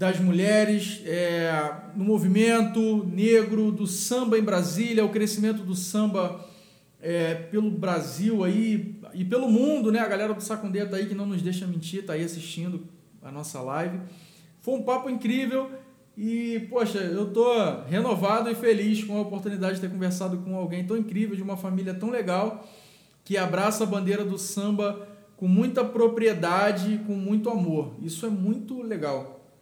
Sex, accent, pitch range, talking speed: male, Brazilian, 165-210 Hz, 165 wpm